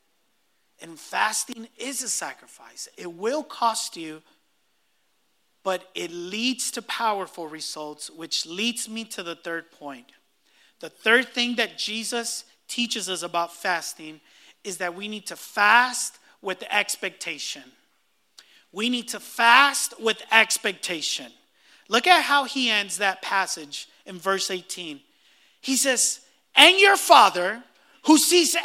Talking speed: 130 wpm